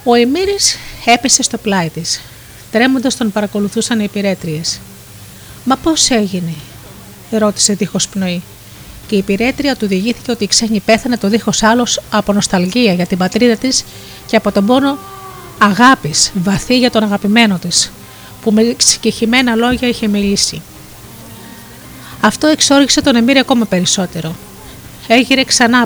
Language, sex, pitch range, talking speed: Greek, female, 195-245 Hz, 135 wpm